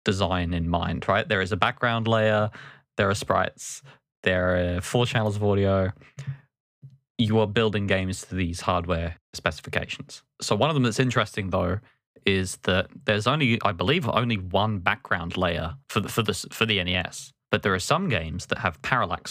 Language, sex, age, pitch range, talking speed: English, male, 20-39, 95-115 Hz, 180 wpm